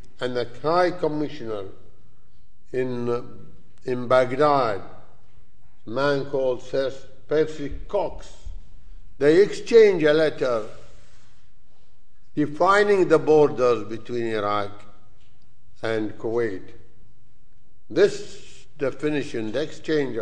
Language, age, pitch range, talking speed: English, 60-79, 115-155 Hz, 85 wpm